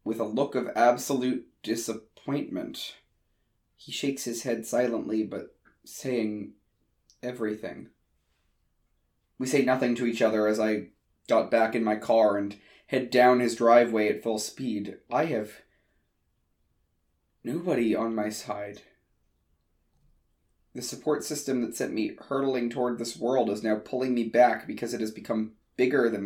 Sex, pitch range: male, 105-130 Hz